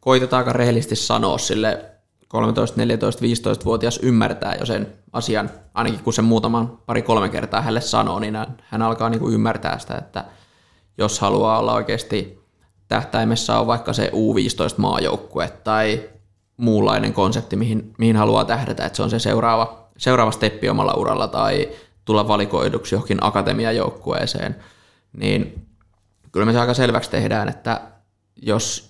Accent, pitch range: native, 105-120 Hz